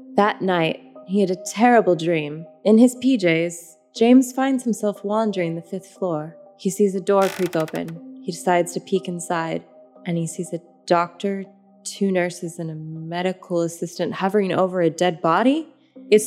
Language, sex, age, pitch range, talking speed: English, female, 20-39, 180-230 Hz, 165 wpm